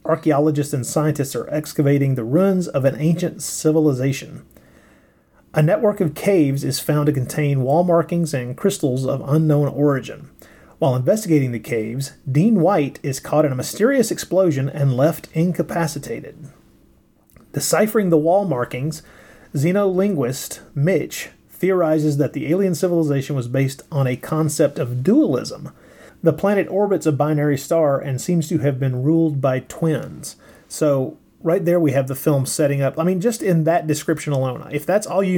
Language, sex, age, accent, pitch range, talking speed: English, male, 30-49, American, 130-160 Hz, 160 wpm